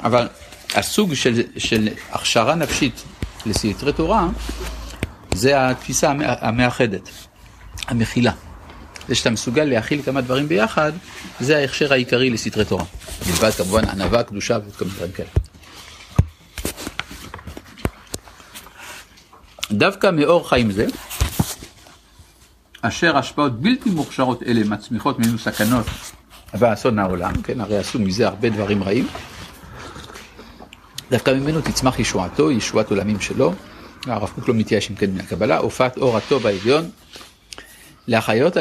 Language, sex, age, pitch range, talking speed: Hebrew, male, 60-79, 100-130 Hz, 110 wpm